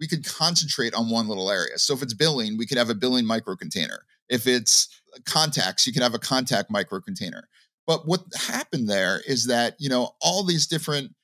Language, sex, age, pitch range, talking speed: English, male, 30-49, 125-170 Hz, 200 wpm